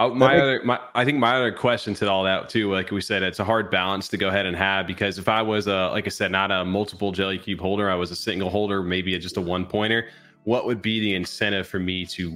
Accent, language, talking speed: American, English, 260 wpm